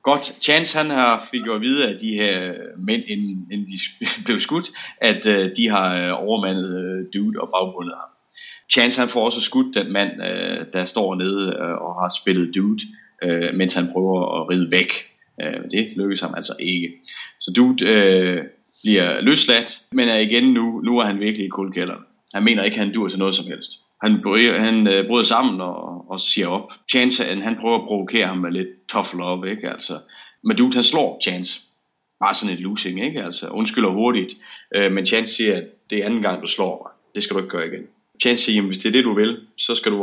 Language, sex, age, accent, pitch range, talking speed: English, male, 30-49, Danish, 95-115 Hz, 205 wpm